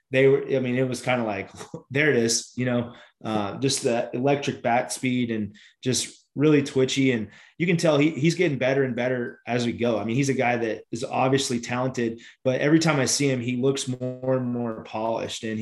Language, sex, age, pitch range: English, male, 20-39, 115-130 Hz